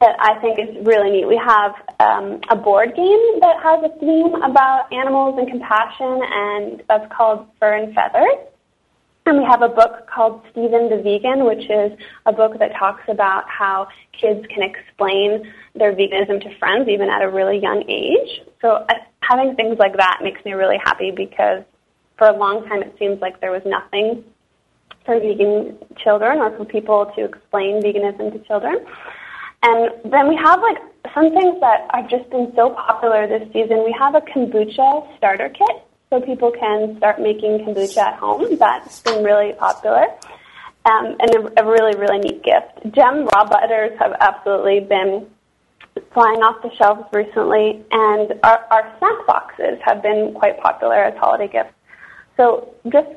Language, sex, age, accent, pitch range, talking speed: English, female, 20-39, American, 210-250 Hz, 175 wpm